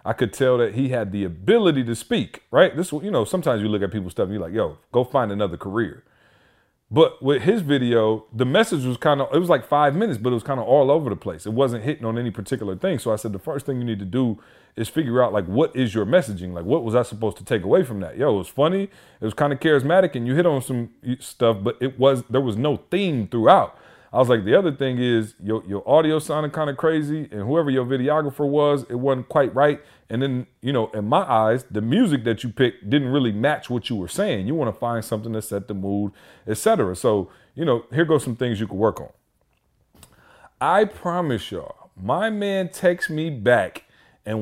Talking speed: 245 wpm